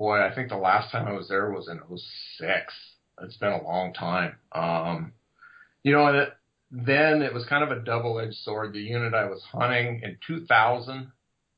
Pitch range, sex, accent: 100-120 Hz, male, American